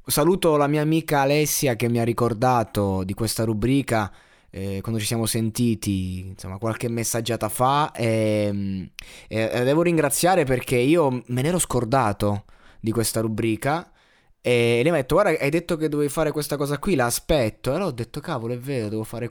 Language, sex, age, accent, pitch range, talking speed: Italian, male, 20-39, native, 110-150 Hz, 185 wpm